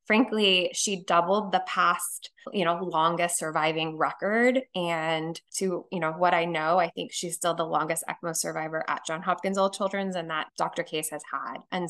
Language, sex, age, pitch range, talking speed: English, female, 20-39, 165-195 Hz, 185 wpm